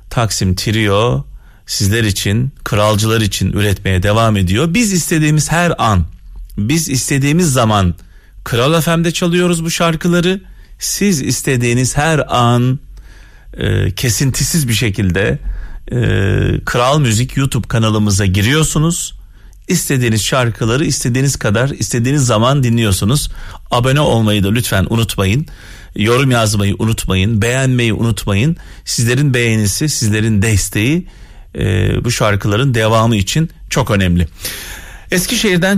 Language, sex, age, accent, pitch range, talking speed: Turkish, male, 40-59, native, 100-145 Hz, 105 wpm